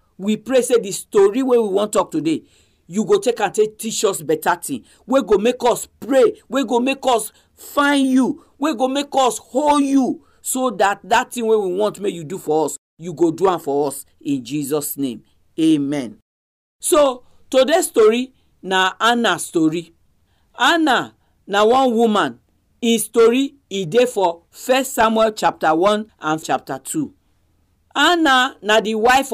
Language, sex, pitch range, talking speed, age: English, male, 185-265 Hz, 175 wpm, 50-69